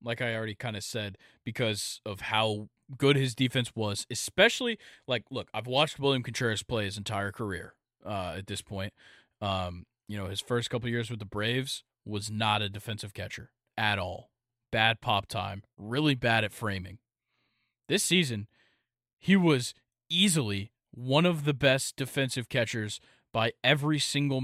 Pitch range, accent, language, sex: 110-140 Hz, American, English, male